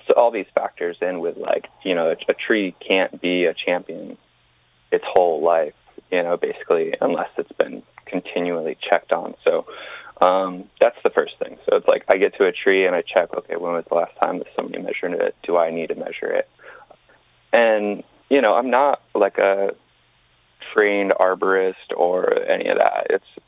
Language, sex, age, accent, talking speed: English, male, 20-39, American, 185 wpm